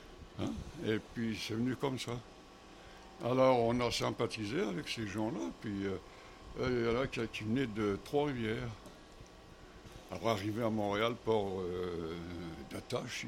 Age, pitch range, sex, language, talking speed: 60-79, 95-115 Hz, male, French, 145 wpm